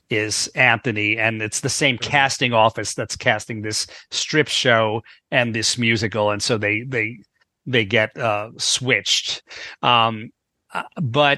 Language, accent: English, American